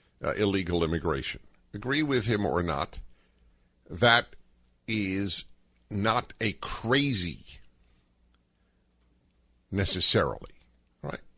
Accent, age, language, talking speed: American, 50-69, English, 80 wpm